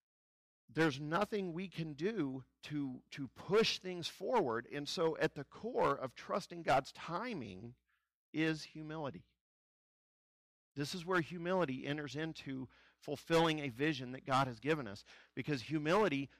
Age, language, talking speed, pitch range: 50-69, English, 135 wpm, 130-160 Hz